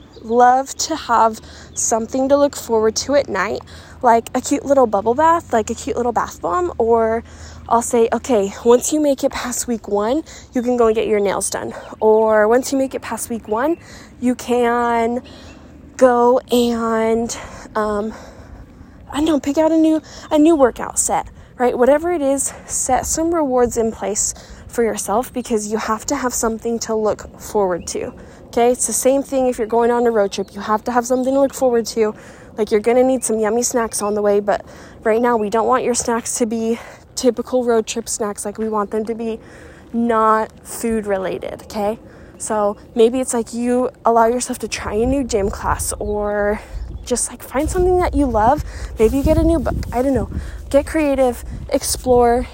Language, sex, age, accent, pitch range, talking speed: English, female, 10-29, American, 220-260 Hz, 200 wpm